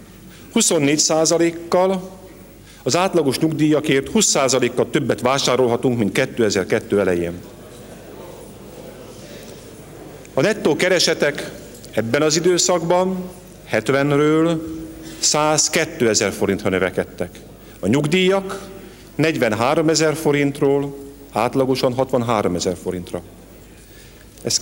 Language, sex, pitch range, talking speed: Hungarian, male, 115-165 Hz, 80 wpm